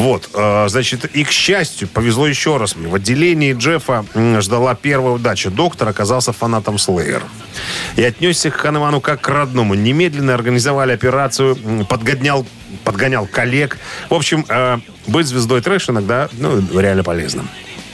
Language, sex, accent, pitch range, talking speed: Russian, male, native, 105-140 Hz, 135 wpm